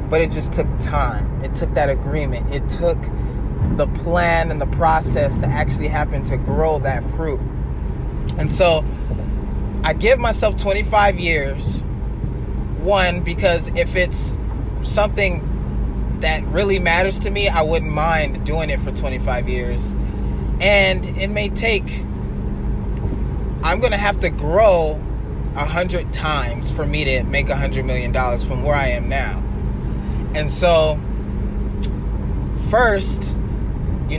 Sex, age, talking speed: male, 30-49, 130 wpm